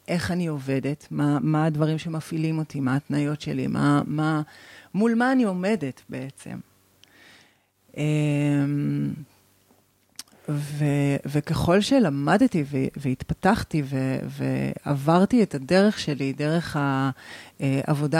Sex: female